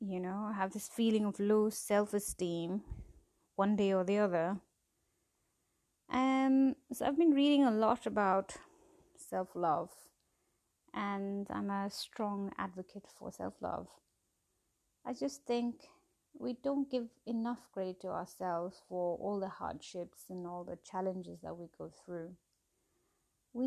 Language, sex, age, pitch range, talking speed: English, female, 30-49, 190-245 Hz, 130 wpm